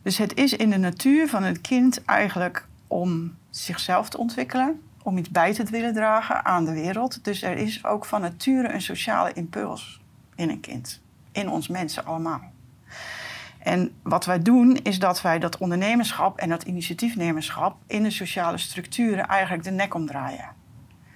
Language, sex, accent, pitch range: Dutch, female, Dutch, 170-220 Hz